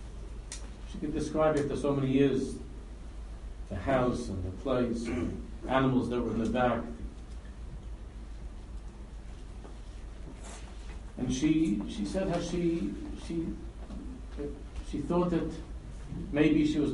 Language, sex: English, male